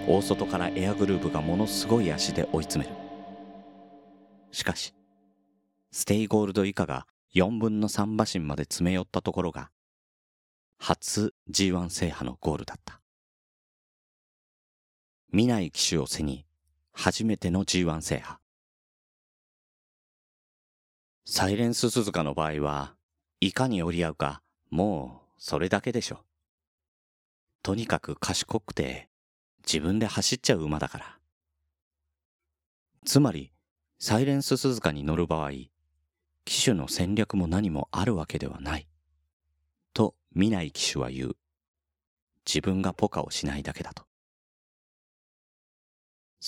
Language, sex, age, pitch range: Japanese, male, 40-59, 75-100 Hz